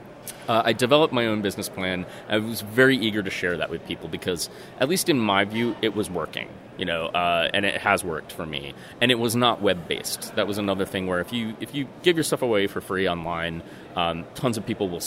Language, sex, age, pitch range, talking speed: English, male, 30-49, 90-110 Hz, 240 wpm